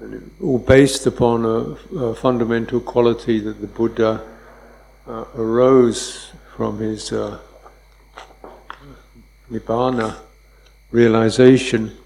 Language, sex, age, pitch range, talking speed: English, male, 60-79, 105-125 Hz, 95 wpm